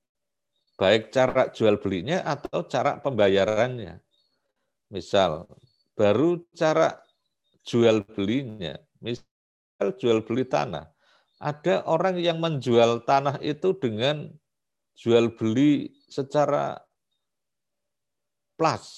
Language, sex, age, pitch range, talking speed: Indonesian, male, 50-69, 110-150 Hz, 85 wpm